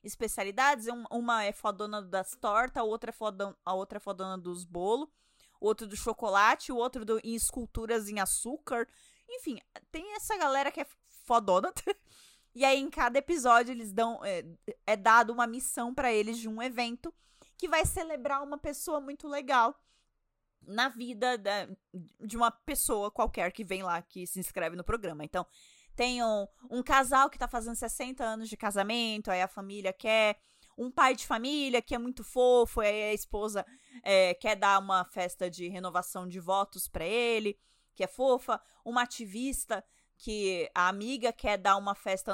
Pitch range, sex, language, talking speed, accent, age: 200-255 Hz, female, Portuguese, 175 wpm, Brazilian, 20-39